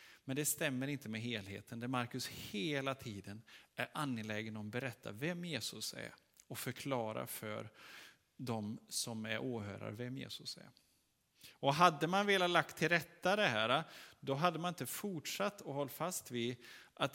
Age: 30-49